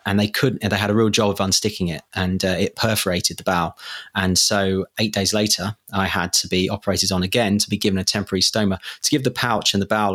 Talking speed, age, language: 255 wpm, 30-49, English